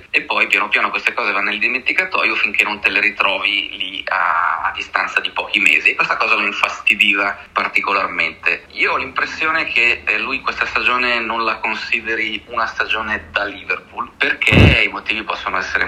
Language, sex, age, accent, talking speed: Italian, male, 30-49, native, 170 wpm